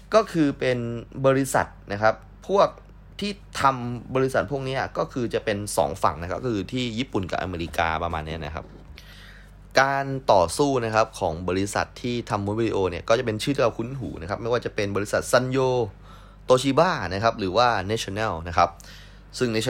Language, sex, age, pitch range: Thai, male, 20-39, 90-115 Hz